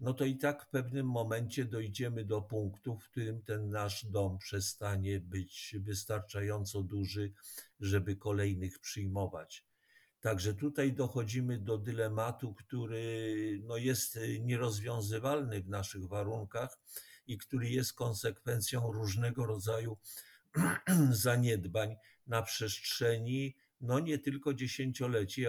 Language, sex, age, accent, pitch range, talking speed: Polish, male, 50-69, native, 105-125 Hz, 110 wpm